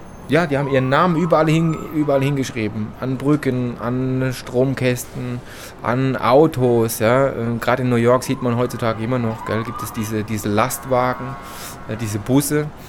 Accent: German